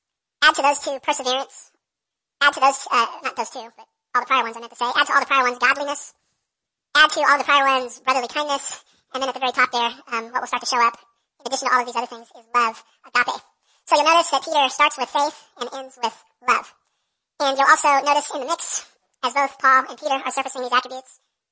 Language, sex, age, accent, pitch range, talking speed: English, male, 40-59, American, 245-280 Hz, 250 wpm